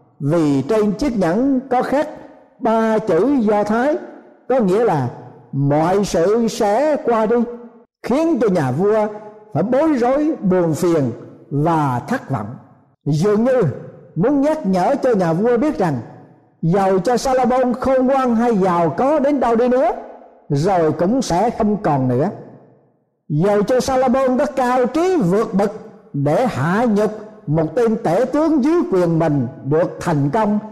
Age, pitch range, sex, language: 60-79, 165-245 Hz, male, Thai